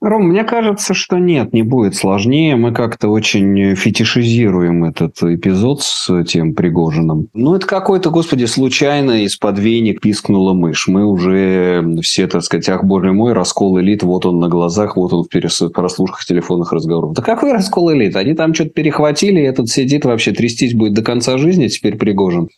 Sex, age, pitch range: male, 20-39, 95-140 Hz